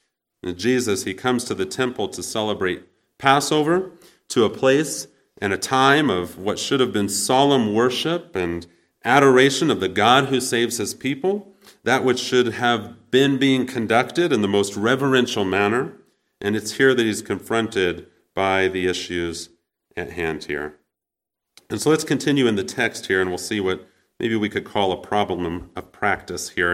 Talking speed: 170 wpm